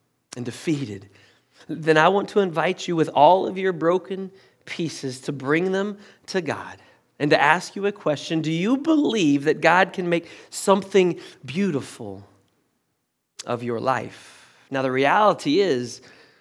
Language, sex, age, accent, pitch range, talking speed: English, male, 30-49, American, 135-180 Hz, 150 wpm